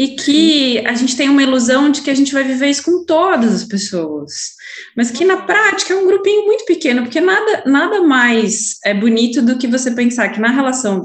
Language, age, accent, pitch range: Portuguese, 20-39, Brazilian, 205-280 Hz